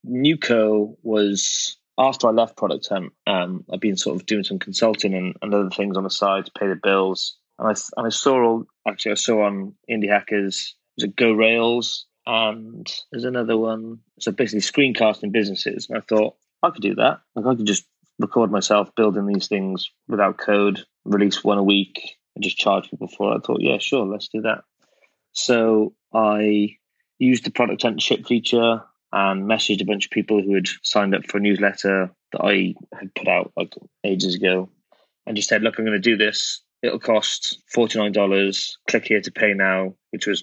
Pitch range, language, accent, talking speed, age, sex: 95-110 Hz, English, British, 200 wpm, 20-39, male